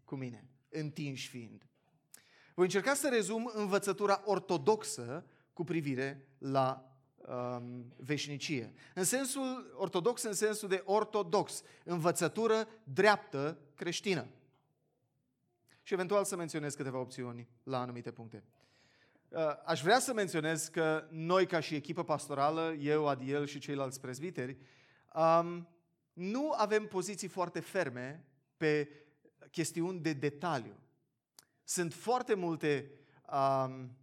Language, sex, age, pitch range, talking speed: Romanian, male, 30-49, 135-180 Hz, 115 wpm